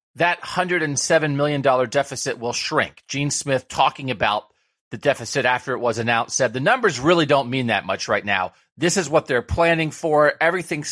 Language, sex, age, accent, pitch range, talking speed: English, male, 40-59, American, 120-155 Hz, 180 wpm